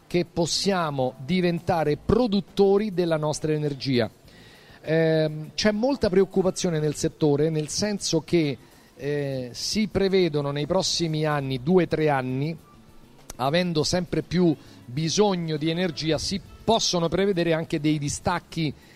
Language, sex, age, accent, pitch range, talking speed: Italian, male, 40-59, native, 145-185 Hz, 120 wpm